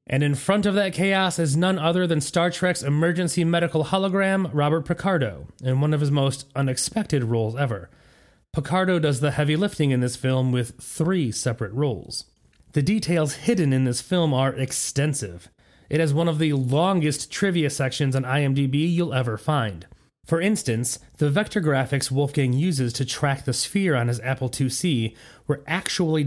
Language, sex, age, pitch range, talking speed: English, male, 30-49, 130-170 Hz, 170 wpm